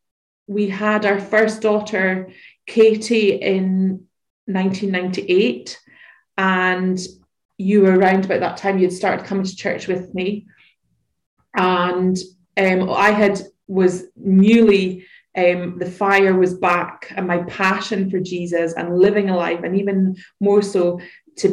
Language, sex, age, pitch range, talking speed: English, female, 20-39, 175-200 Hz, 130 wpm